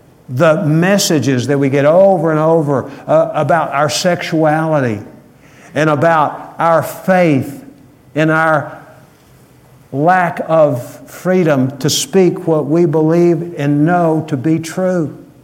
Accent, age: American, 60-79